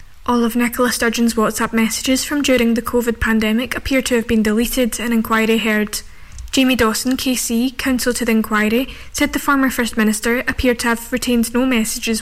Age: 10-29